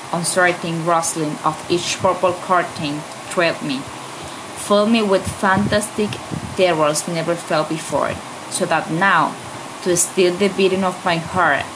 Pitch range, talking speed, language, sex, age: 155-185 Hz, 135 wpm, English, female, 20-39